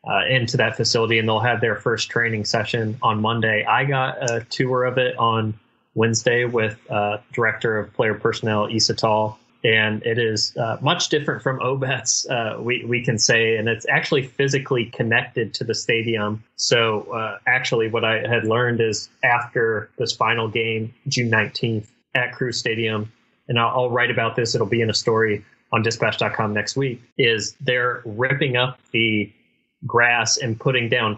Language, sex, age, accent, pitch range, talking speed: English, male, 20-39, American, 110-125 Hz, 175 wpm